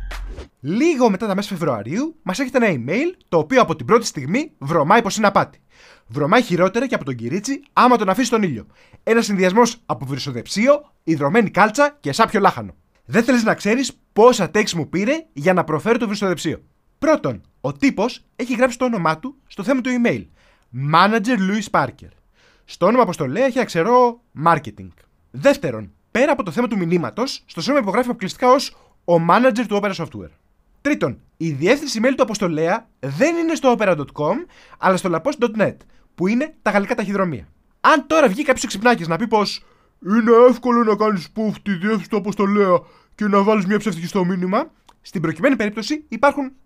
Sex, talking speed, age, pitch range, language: male, 175 wpm, 20-39, 170-250 Hz, Greek